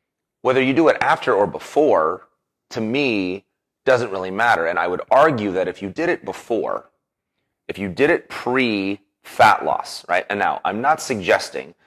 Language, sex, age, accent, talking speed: English, male, 30-49, American, 170 wpm